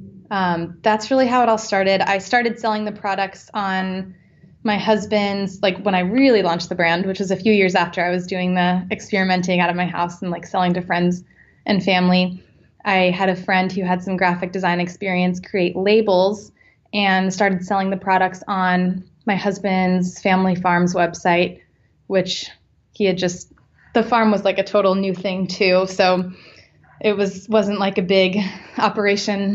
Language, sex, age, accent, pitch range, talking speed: English, female, 20-39, American, 180-200 Hz, 180 wpm